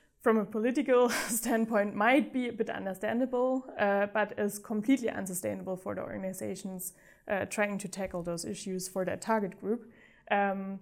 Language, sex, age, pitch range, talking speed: English, female, 20-39, 195-220 Hz, 155 wpm